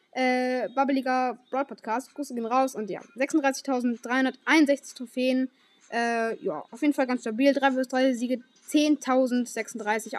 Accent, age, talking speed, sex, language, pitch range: German, 10-29, 130 wpm, female, German, 235-290 Hz